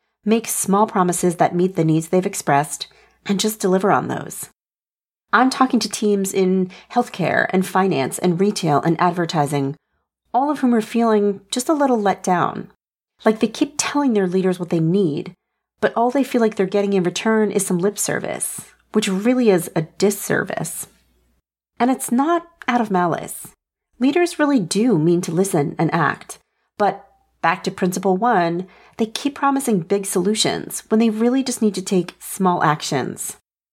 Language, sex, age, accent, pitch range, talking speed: English, female, 40-59, American, 180-235 Hz, 170 wpm